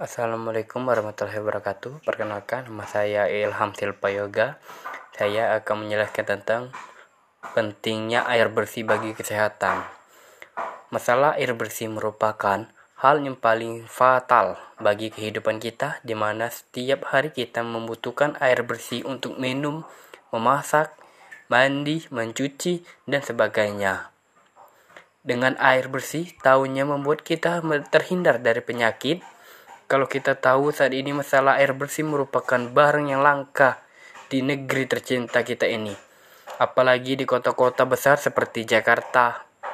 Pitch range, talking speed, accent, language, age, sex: 115-145 Hz, 115 wpm, native, Indonesian, 20-39, male